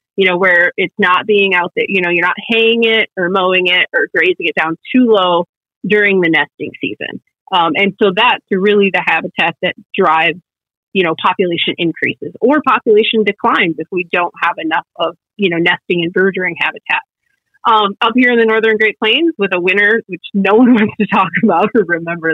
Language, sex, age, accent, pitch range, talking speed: English, female, 30-49, American, 170-220 Hz, 200 wpm